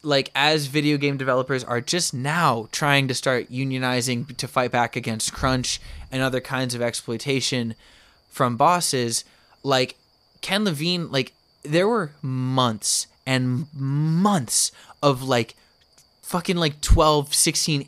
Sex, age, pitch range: male, 20-39, 125-155 Hz